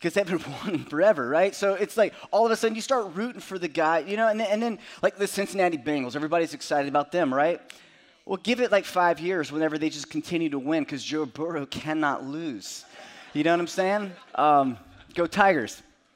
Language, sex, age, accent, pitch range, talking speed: English, male, 30-49, American, 155-220 Hz, 215 wpm